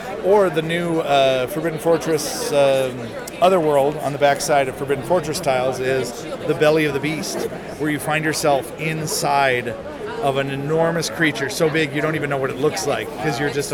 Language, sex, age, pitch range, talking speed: English, male, 40-59, 135-160 Hz, 190 wpm